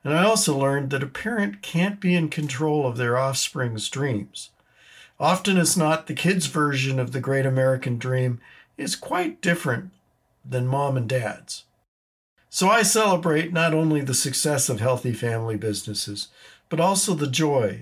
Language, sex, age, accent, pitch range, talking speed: English, male, 50-69, American, 120-160 Hz, 160 wpm